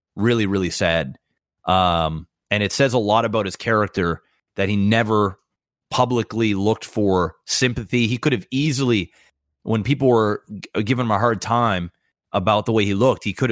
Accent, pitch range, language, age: American, 100-125 Hz, English, 30-49